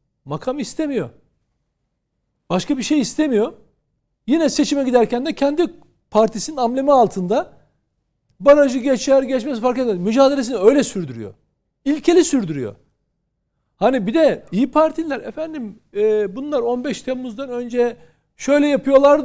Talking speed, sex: 115 wpm, male